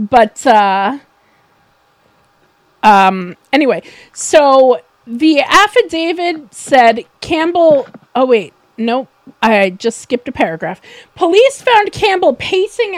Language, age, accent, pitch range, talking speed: English, 40-59, American, 235-350 Hz, 95 wpm